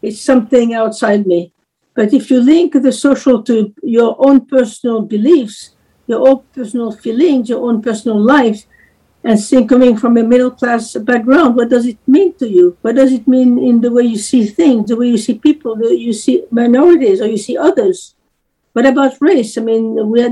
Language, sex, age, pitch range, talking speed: English, female, 60-79, 220-265 Hz, 190 wpm